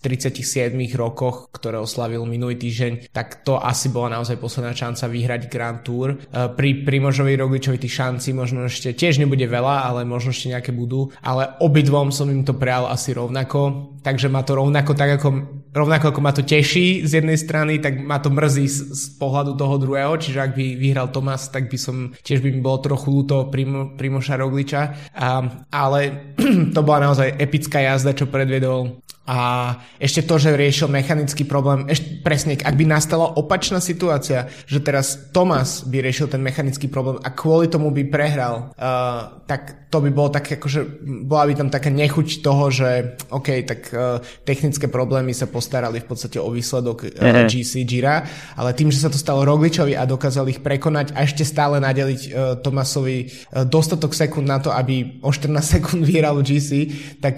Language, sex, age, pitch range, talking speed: Slovak, male, 20-39, 130-145 Hz, 180 wpm